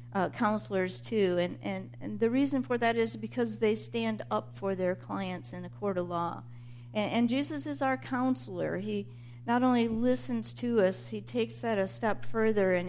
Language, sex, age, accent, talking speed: English, female, 50-69, American, 190 wpm